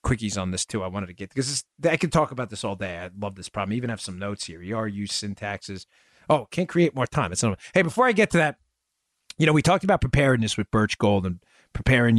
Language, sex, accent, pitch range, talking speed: English, male, American, 110-180 Hz, 260 wpm